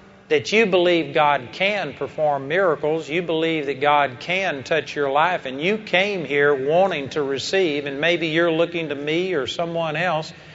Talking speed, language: 175 wpm, English